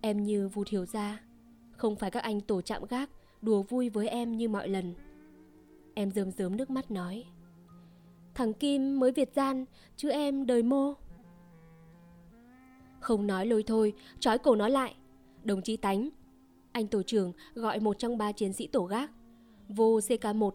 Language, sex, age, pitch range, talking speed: Vietnamese, female, 20-39, 200-245 Hz, 170 wpm